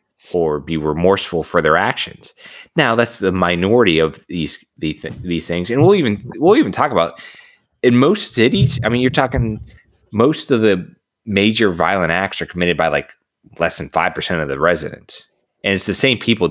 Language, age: English, 30-49